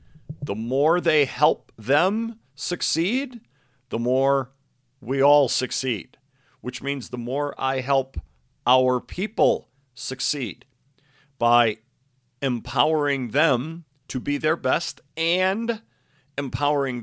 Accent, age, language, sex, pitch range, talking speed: American, 50-69, English, male, 120-145 Hz, 100 wpm